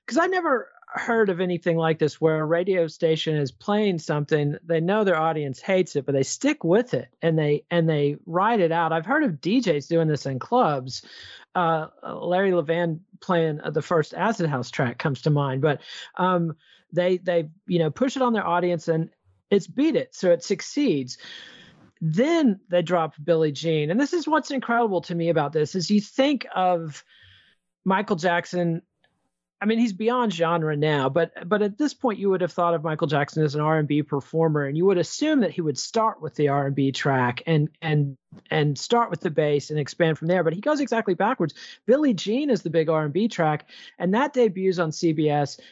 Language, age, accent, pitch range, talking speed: English, 40-59, American, 155-205 Hz, 205 wpm